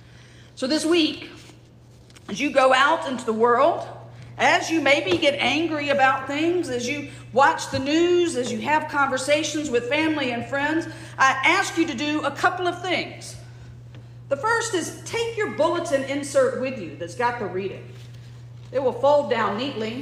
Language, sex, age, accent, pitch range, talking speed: English, female, 40-59, American, 220-300 Hz, 170 wpm